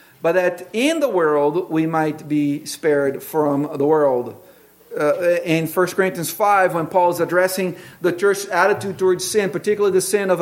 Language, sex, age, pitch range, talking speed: English, male, 50-69, 155-205 Hz, 175 wpm